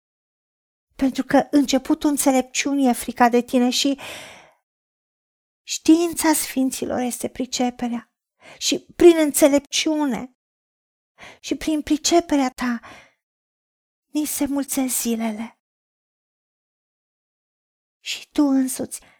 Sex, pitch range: female, 230-280 Hz